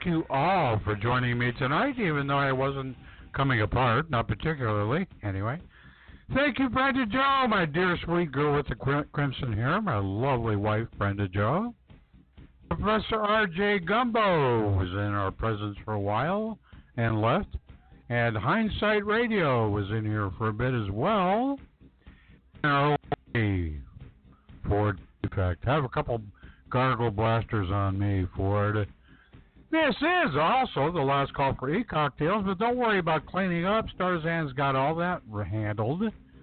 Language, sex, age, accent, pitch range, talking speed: English, male, 60-79, American, 105-175 Hz, 150 wpm